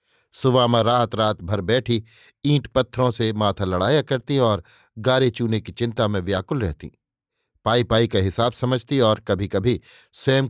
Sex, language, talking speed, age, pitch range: male, Hindi, 160 wpm, 50-69, 110-140 Hz